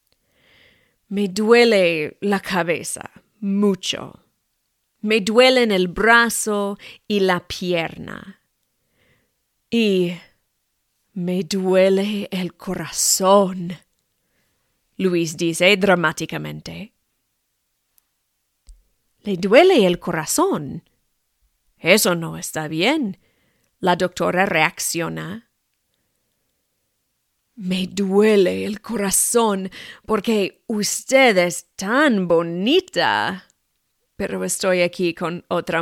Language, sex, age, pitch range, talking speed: English, female, 30-49, 175-215 Hz, 75 wpm